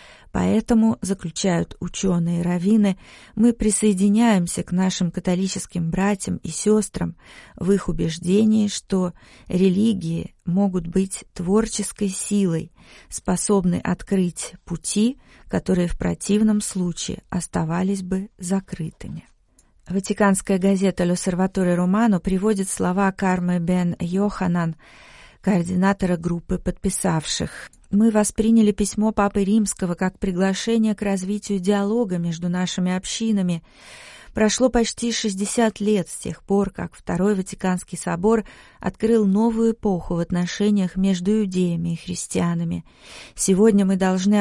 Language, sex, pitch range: Russian, female, 180-205 Hz